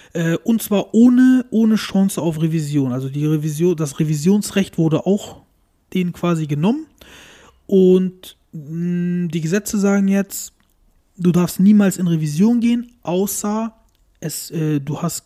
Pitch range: 160-210 Hz